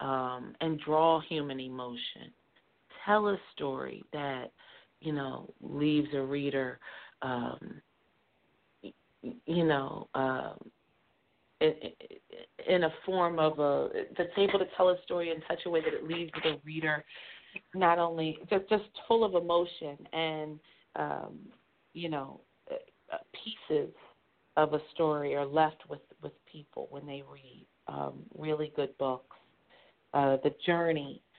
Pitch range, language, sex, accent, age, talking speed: 130-160 Hz, English, female, American, 40-59, 130 wpm